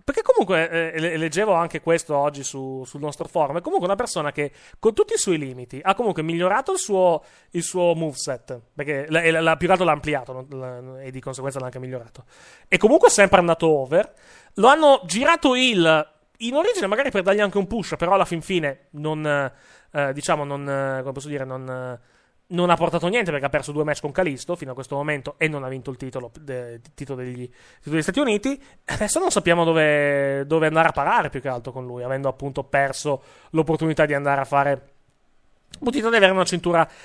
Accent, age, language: native, 30-49, Italian